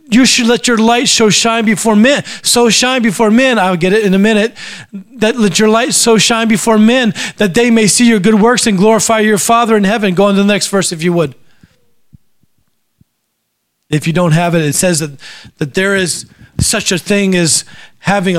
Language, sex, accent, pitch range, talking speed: English, male, American, 180-225 Hz, 210 wpm